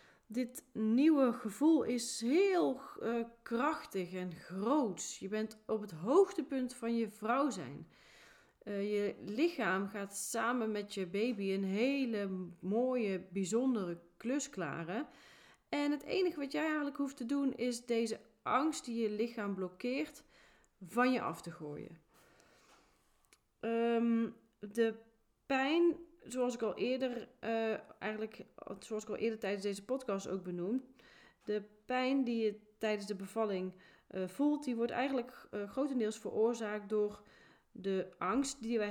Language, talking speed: Dutch, 140 wpm